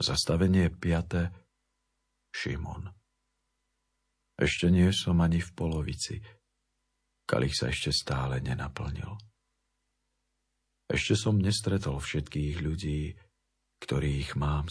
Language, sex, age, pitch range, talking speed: Slovak, male, 50-69, 75-95 Hz, 85 wpm